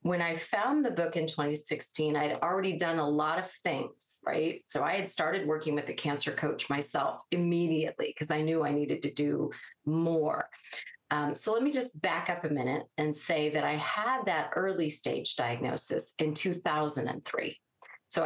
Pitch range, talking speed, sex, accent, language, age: 160-215 Hz, 185 wpm, female, American, English, 40-59